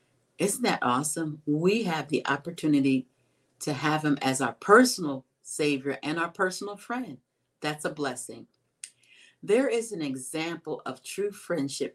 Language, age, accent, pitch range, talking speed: English, 50-69, American, 130-160 Hz, 140 wpm